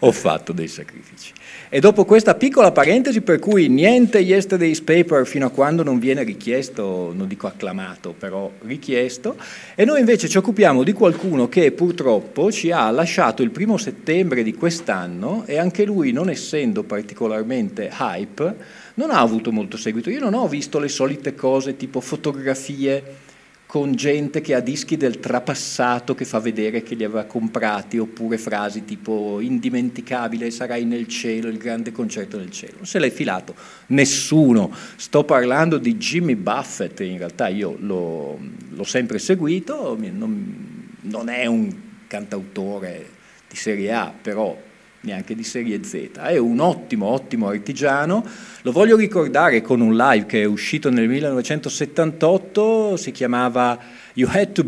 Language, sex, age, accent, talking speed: Italian, male, 40-59, native, 155 wpm